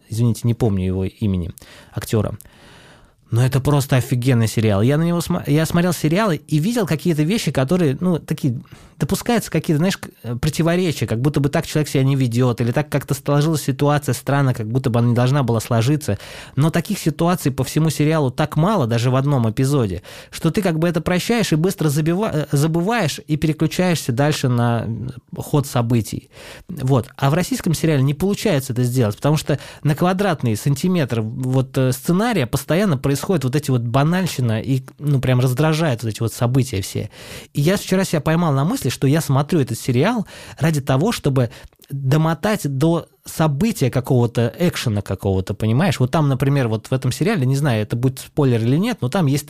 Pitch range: 125-160 Hz